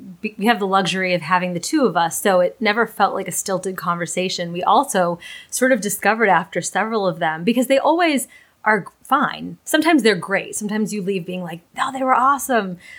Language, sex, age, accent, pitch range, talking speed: English, female, 20-39, American, 180-220 Hz, 205 wpm